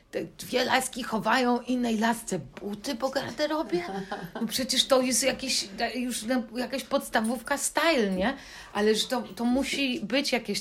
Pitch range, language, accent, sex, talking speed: 185-235 Hz, Polish, native, female, 140 wpm